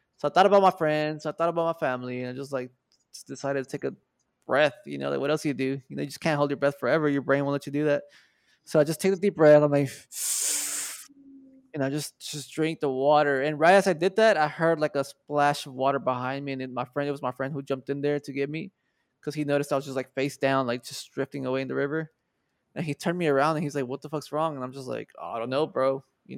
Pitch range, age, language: 135-160 Hz, 20-39, English